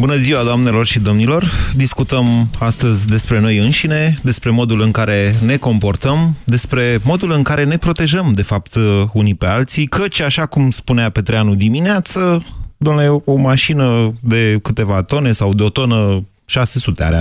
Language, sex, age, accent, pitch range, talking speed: Romanian, male, 30-49, native, 110-150 Hz, 155 wpm